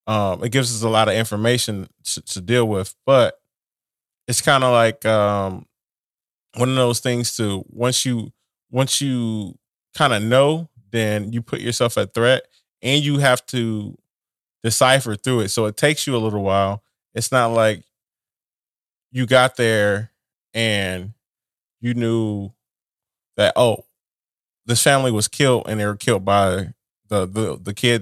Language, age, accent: English, 20-39, American